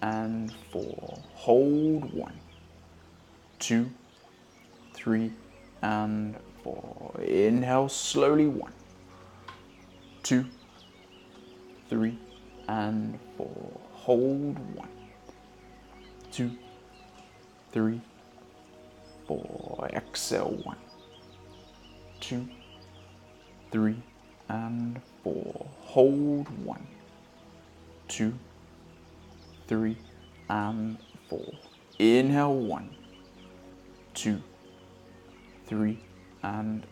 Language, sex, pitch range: English, male, 95-115 Hz